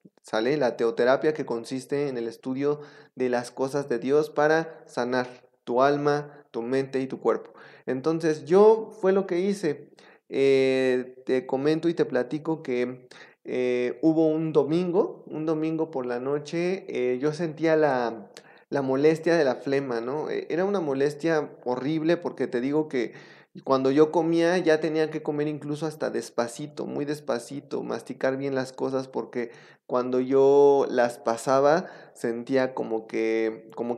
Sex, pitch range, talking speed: male, 125-155 Hz, 155 wpm